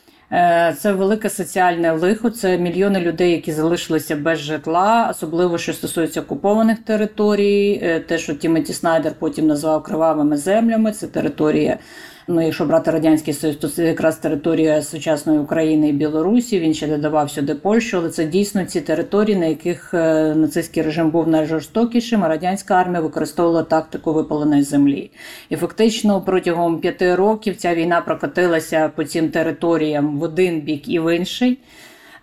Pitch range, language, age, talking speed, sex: 160-195 Hz, Ukrainian, 50-69, 145 wpm, female